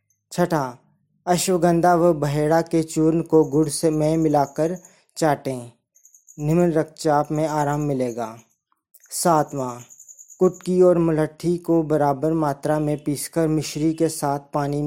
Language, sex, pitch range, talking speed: Hindi, male, 140-160 Hz, 120 wpm